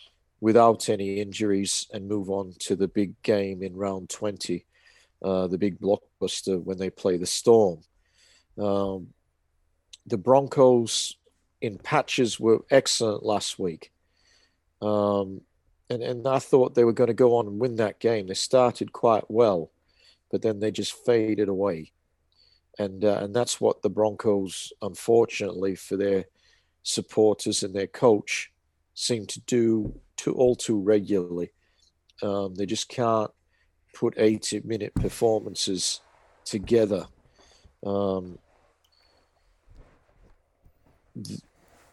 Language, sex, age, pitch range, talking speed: English, male, 50-69, 90-110 Hz, 125 wpm